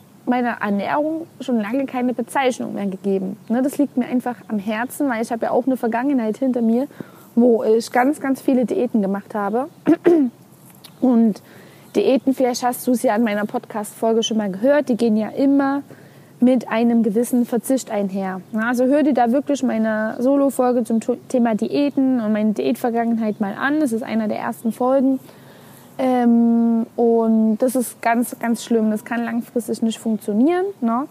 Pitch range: 225-265 Hz